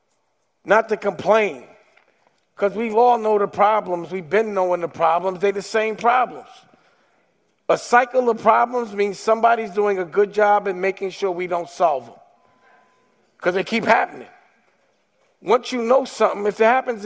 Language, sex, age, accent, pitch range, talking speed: English, male, 50-69, American, 190-220 Hz, 160 wpm